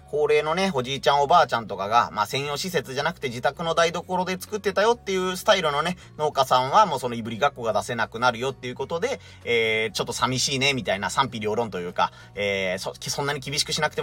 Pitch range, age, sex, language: 110-170 Hz, 30-49, male, Japanese